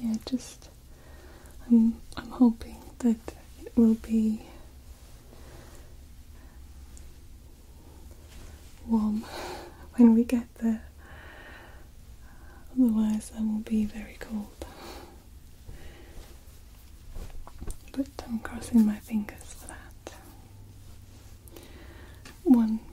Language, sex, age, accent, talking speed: English, female, 20-39, British, 70 wpm